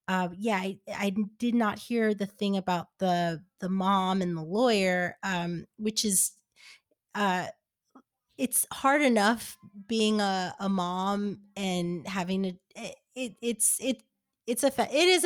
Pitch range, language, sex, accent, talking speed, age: 185-215 Hz, English, female, American, 150 wpm, 20-39